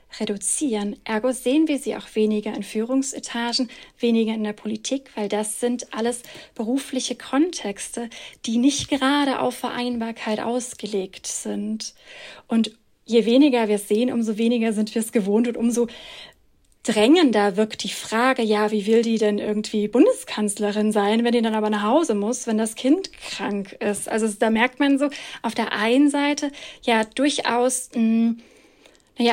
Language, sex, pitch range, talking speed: German, female, 220-260 Hz, 160 wpm